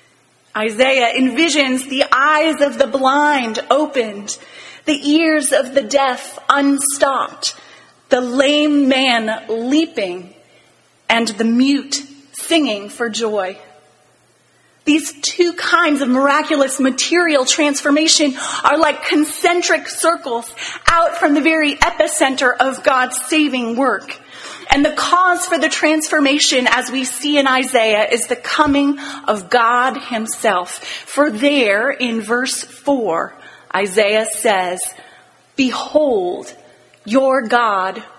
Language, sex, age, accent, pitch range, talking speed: English, female, 30-49, American, 240-300 Hz, 110 wpm